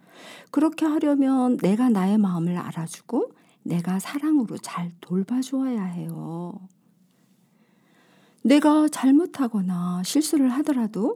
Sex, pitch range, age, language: female, 180-270 Hz, 50-69, Korean